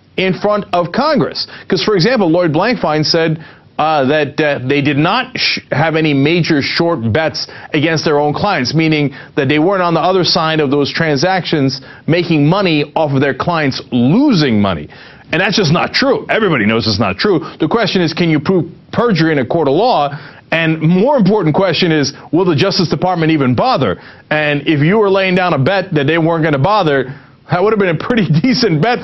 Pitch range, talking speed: 145-195 Hz, 205 wpm